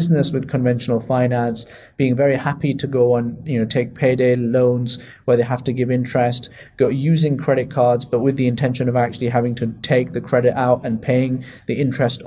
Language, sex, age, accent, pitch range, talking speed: English, male, 20-39, British, 120-140 Hz, 195 wpm